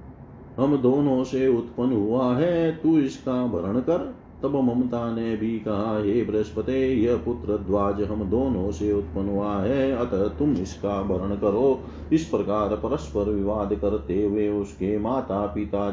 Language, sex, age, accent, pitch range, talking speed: Hindi, male, 40-59, native, 100-125 Hz, 145 wpm